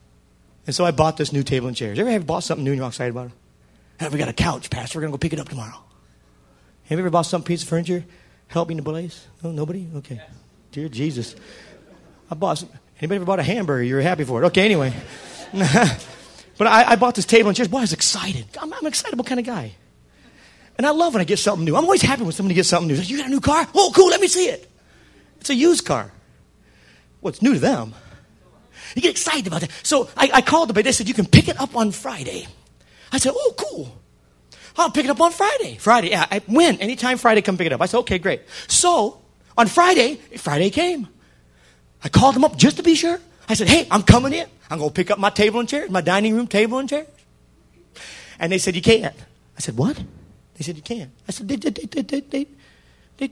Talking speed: 245 wpm